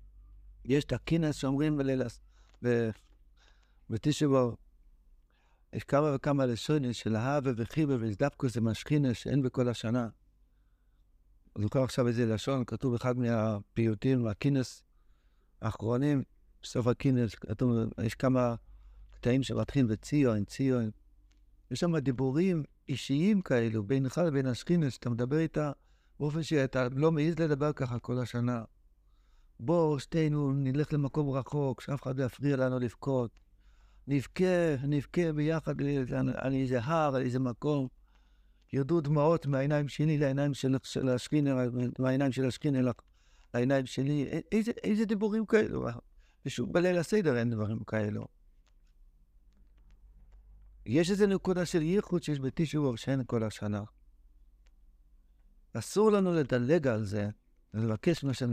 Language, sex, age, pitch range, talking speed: Hebrew, male, 60-79, 110-145 Hz, 120 wpm